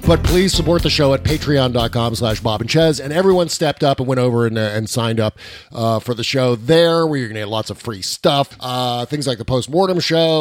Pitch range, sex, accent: 110-150 Hz, male, American